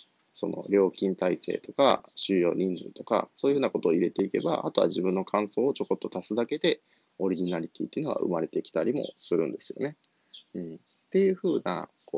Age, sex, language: 20-39, male, Japanese